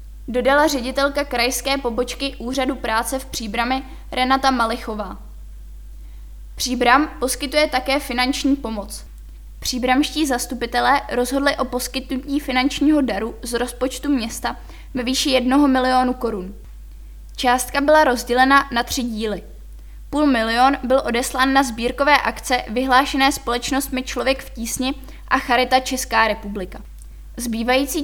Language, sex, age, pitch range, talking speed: Czech, female, 20-39, 235-275 Hz, 115 wpm